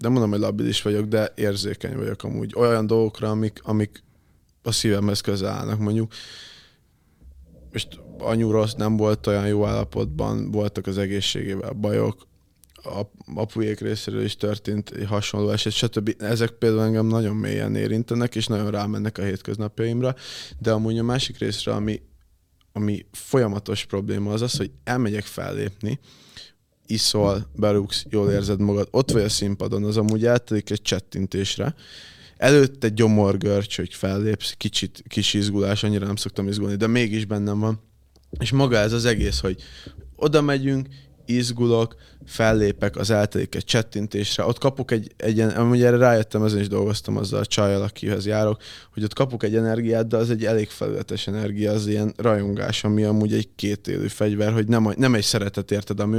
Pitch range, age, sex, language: 100-115 Hz, 20-39, male, Hungarian